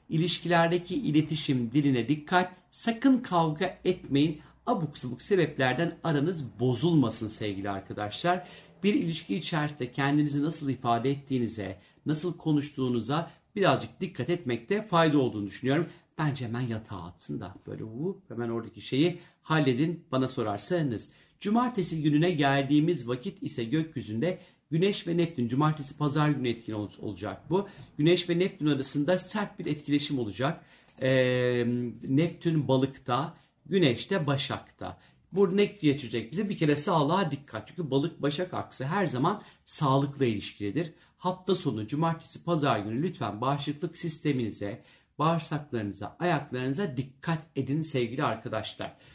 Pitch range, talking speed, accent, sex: 125-175 Hz, 120 wpm, native, male